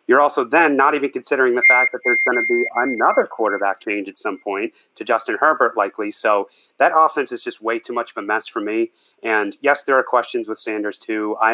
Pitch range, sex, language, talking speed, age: 105-125 Hz, male, English, 235 wpm, 30-49